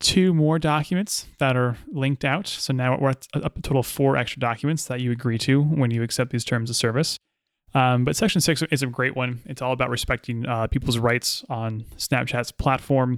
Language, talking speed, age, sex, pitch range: English, 210 wpm, 20-39, male, 115-135 Hz